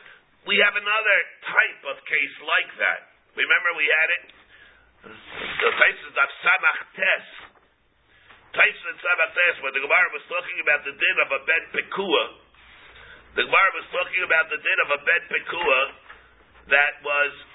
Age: 50-69